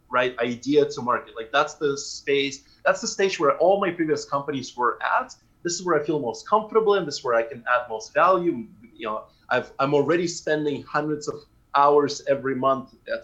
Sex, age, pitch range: male, 30-49, 125-175 Hz